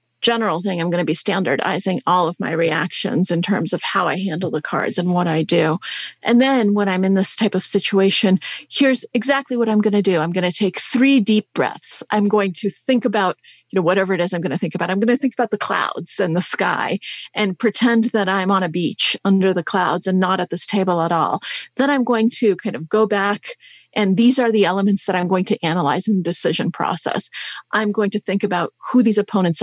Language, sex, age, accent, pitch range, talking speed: English, female, 40-59, American, 185-240 Hz, 240 wpm